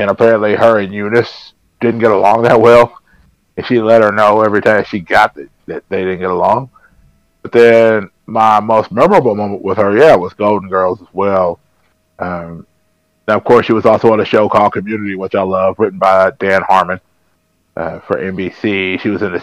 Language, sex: English, male